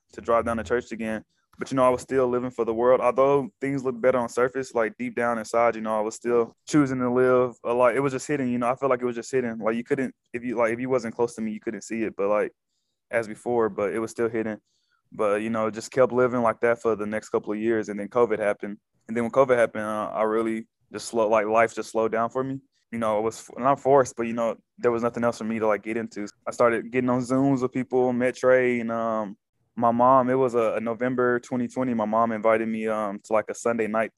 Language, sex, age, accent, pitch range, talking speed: English, male, 20-39, American, 110-125 Hz, 275 wpm